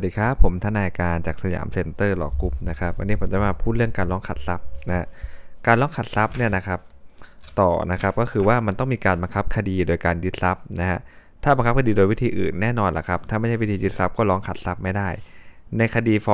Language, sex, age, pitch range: Thai, male, 20-39, 90-110 Hz